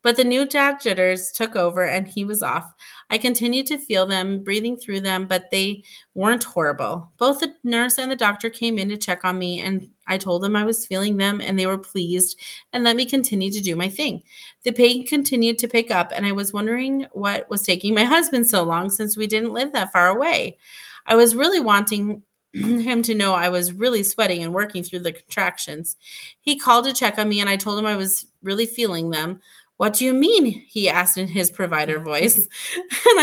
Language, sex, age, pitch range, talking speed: English, female, 30-49, 190-250 Hz, 220 wpm